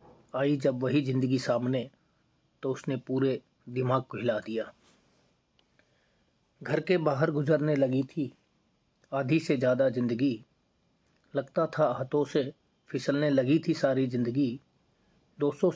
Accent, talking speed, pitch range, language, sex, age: native, 120 wpm, 125-150 Hz, Hindi, male, 30-49